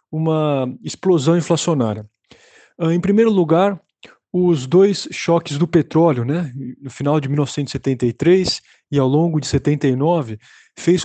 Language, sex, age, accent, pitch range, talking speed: Portuguese, male, 20-39, Brazilian, 130-165 Hz, 120 wpm